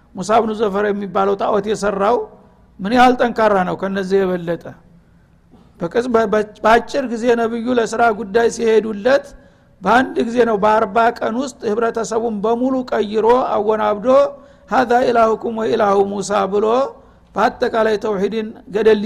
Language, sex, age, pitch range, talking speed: Amharic, male, 60-79, 205-240 Hz, 110 wpm